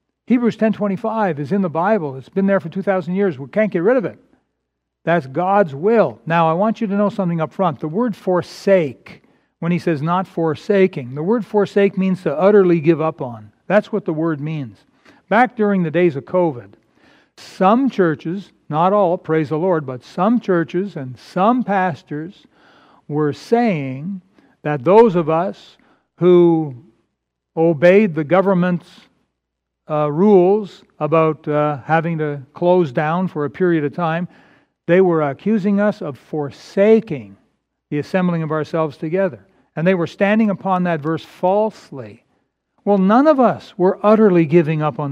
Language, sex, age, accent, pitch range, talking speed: English, male, 60-79, American, 160-215 Hz, 160 wpm